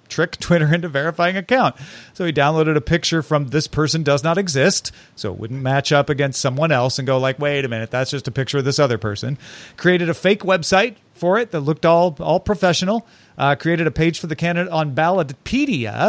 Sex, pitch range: male, 140-175 Hz